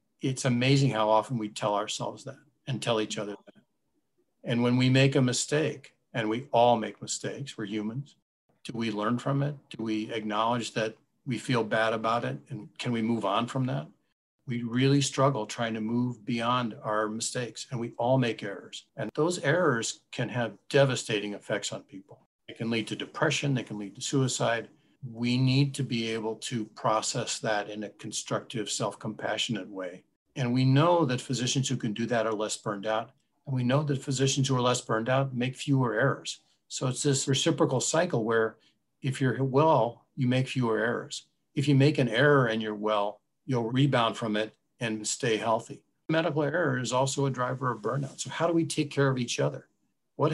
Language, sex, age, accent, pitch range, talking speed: English, male, 50-69, American, 110-135 Hz, 195 wpm